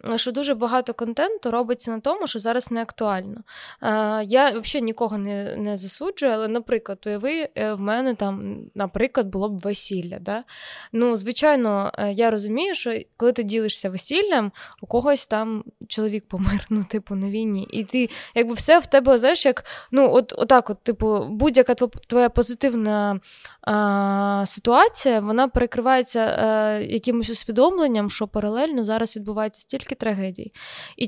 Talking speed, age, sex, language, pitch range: 155 wpm, 20-39, female, Ukrainian, 215-255 Hz